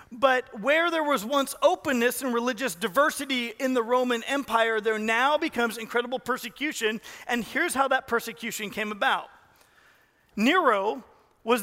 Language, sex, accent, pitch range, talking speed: English, male, American, 230-280 Hz, 140 wpm